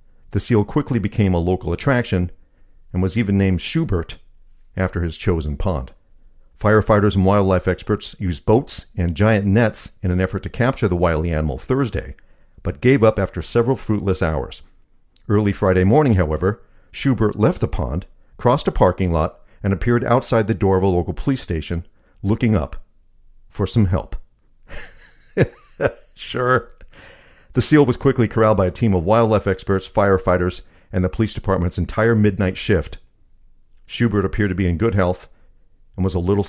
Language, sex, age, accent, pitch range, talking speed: English, male, 50-69, American, 90-110 Hz, 165 wpm